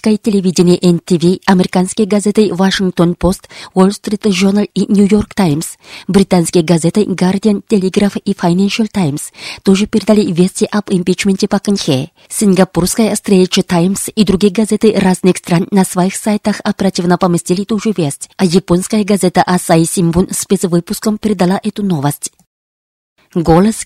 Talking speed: 130 wpm